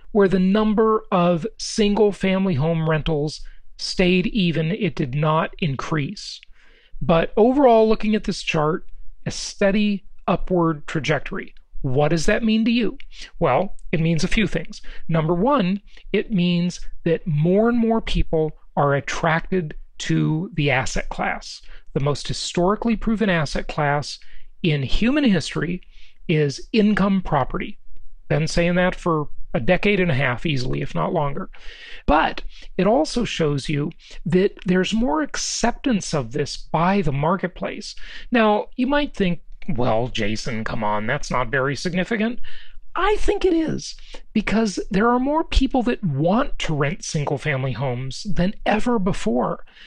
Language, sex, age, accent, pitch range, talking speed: English, male, 40-59, American, 155-215 Hz, 145 wpm